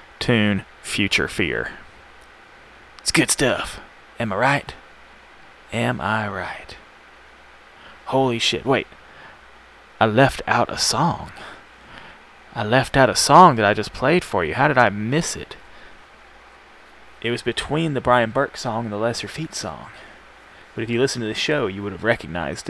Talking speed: 155 wpm